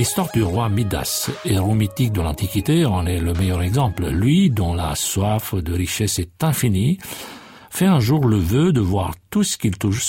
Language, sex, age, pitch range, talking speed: French, male, 60-79, 95-110 Hz, 190 wpm